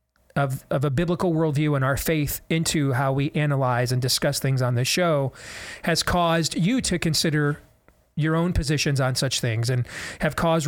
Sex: male